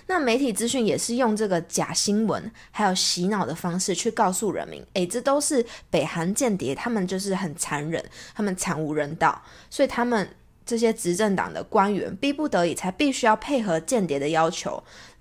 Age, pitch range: 20-39, 180-250 Hz